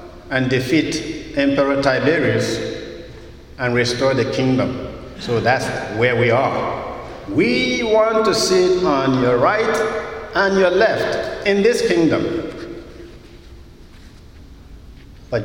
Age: 50-69